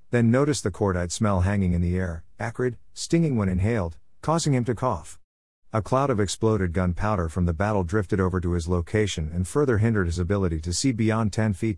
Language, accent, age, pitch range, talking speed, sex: English, American, 50-69, 90-115 Hz, 205 wpm, male